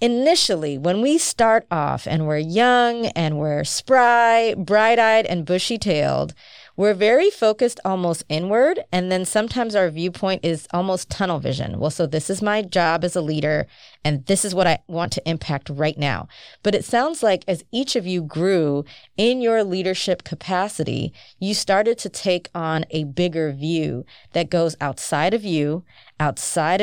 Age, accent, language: 30-49, American, English